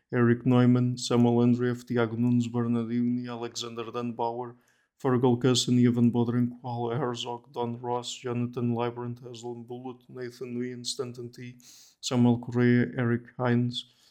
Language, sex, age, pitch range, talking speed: English, male, 20-39, 120-125 Hz, 130 wpm